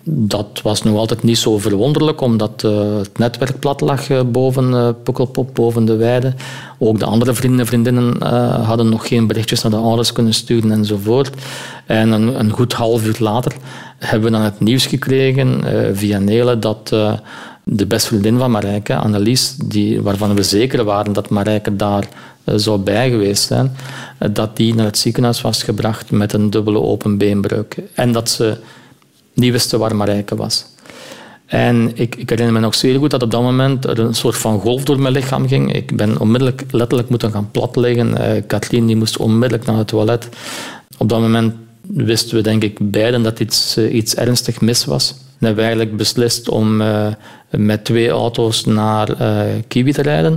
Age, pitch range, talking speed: 50-69, 110-125 Hz, 190 wpm